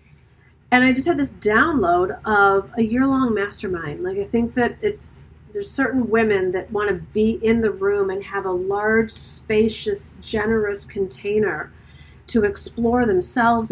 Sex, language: female, English